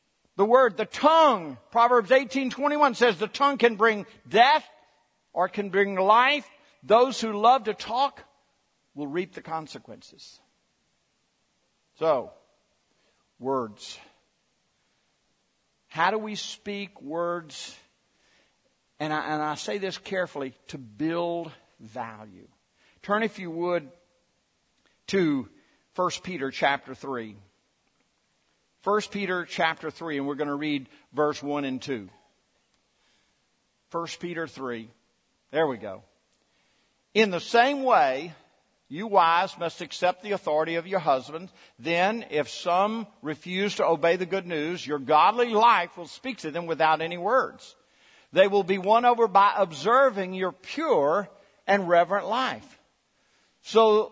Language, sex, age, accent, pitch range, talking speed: English, male, 60-79, American, 155-220 Hz, 130 wpm